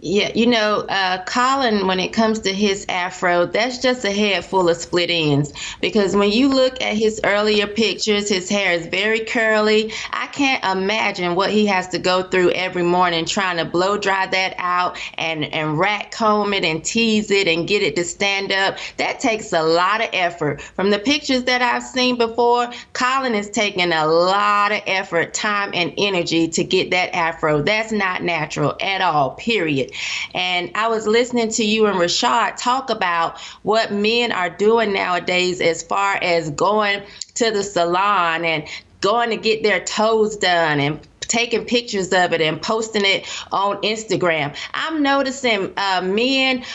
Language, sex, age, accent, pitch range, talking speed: English, female, 30-49, American, 185-240 Hz, 180 wpm